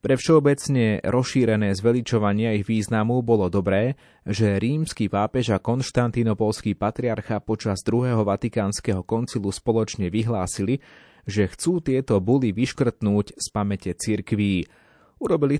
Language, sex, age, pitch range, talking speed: Slovak, male, 30-49, 100-120 Hz, 110 wpm